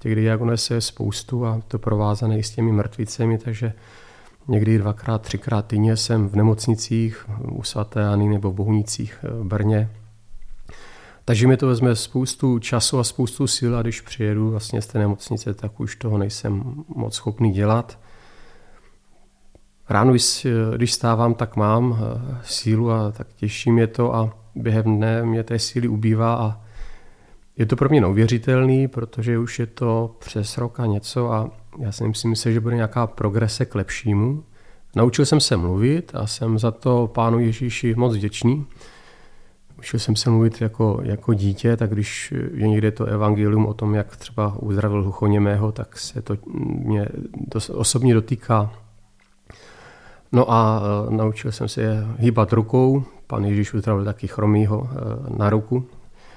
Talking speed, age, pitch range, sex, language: 150 wpm, 40-59, 105-120 Hz, male, Czech